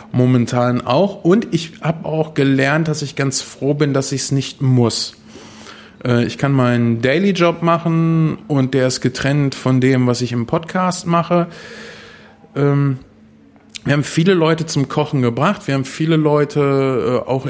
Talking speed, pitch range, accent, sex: 160 wpm, 120-155 Hz, German, male